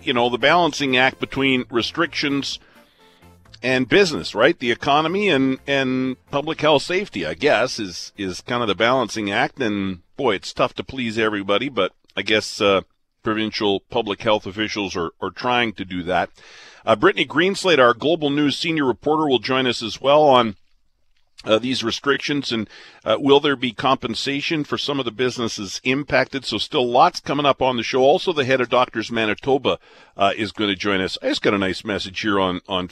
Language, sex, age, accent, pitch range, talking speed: English, male, 50-69, American, 105-140 Hz, 190 wpm